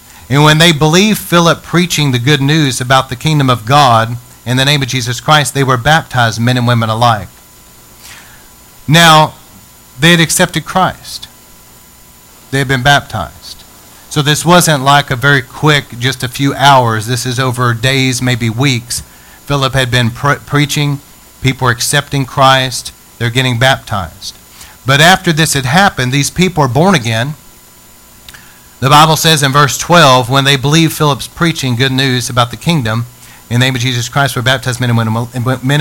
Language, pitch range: English, 120-150 Hz